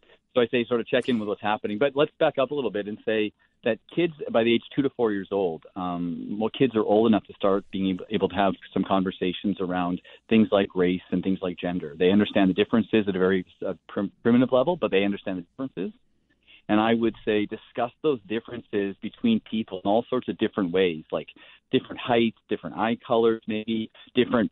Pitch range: 100-120 Hz